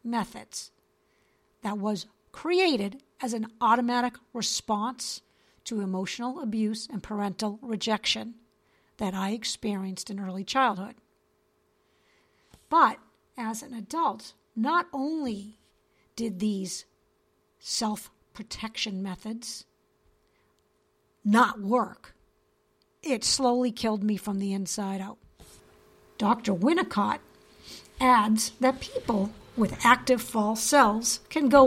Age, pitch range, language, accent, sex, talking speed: 50-69, 210-245 Hz, English, American, female, 95 wpm